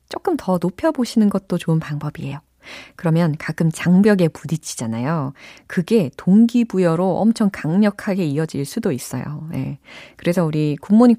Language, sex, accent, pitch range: Korean, female, native, 155-225 Hz